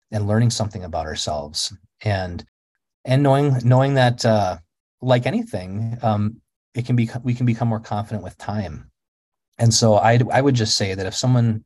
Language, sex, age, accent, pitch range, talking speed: English, male, 30-49, American, 100-120 Hz, 175 wpm